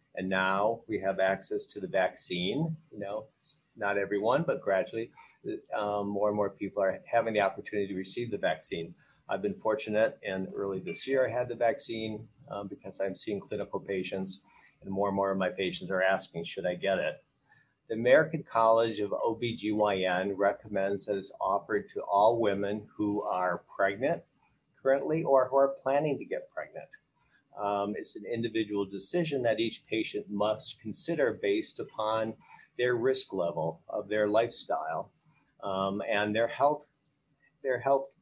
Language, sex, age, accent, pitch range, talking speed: English, male, 50-69, American, 100-140 Hz, 165 wpm